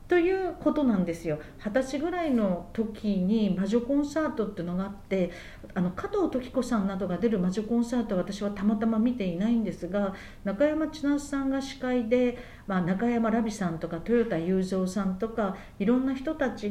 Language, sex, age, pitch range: Japanese, female, 50-69, 195-270 Hz